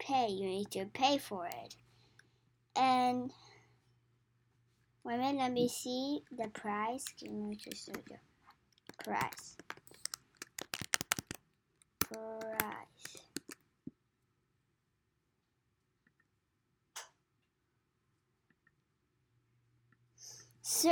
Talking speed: 60 wpm